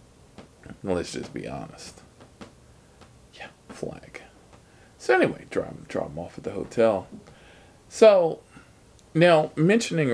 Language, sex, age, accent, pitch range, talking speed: English, male, 40-59, American, 90-110 Hz, 100 wpm